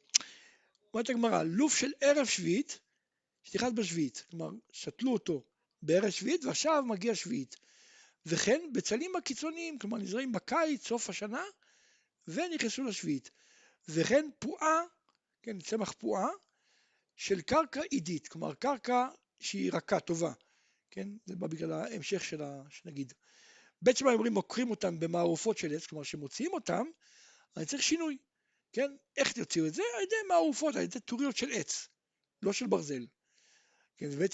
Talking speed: 130 wpm